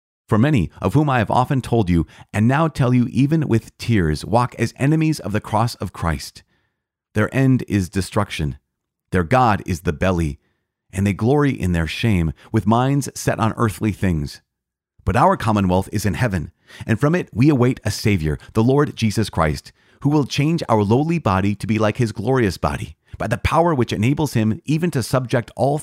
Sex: male